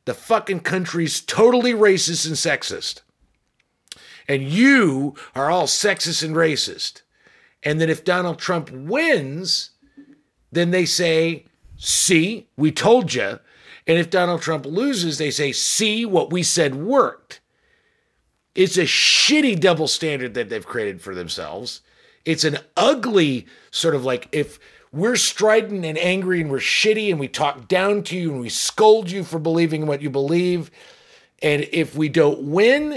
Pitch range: 140-195 Hz